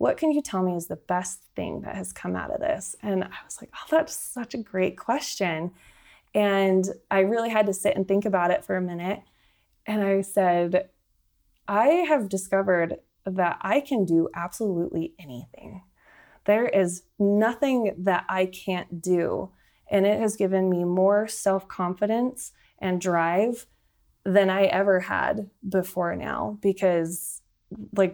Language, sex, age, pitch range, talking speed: English, female, 20-39, 175-205 Hz, 160 wpm